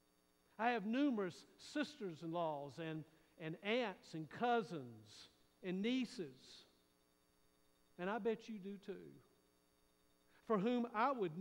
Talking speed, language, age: 105 wpm, English, 50-69